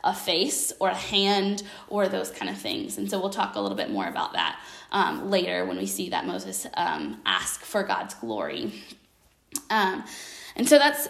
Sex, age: female, 10-29